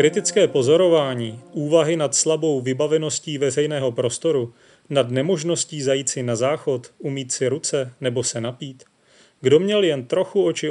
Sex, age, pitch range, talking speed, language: male, 30-49, 125-160 Hz, 140 wpm, Czech